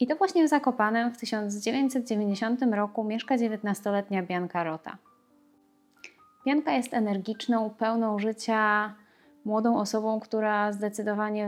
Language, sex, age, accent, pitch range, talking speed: Polish, female, 20-39, native, 185-245 Hz, 110 wpm